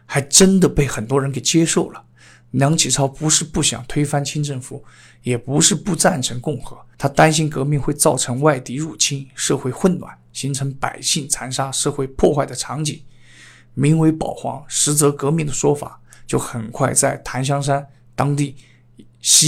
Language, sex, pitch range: Chinese, male, 125-150 Hz